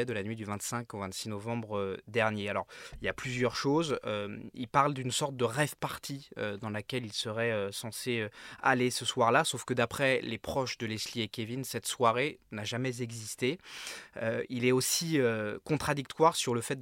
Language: French